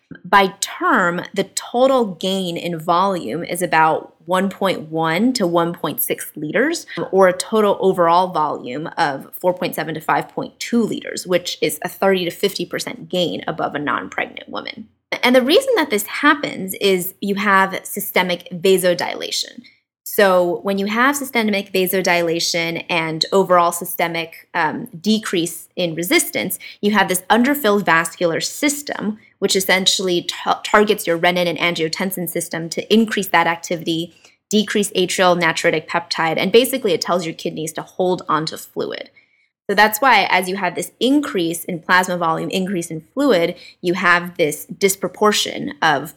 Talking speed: 145 wpm